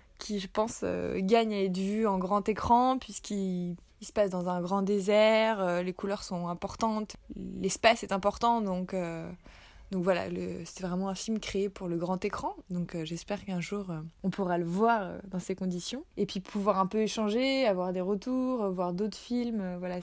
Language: French